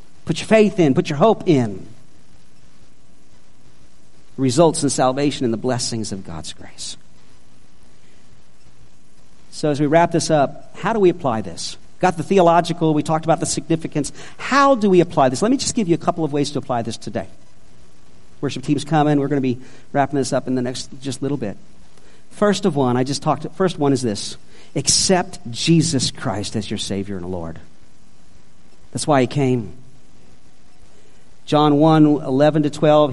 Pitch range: 120-165 Hz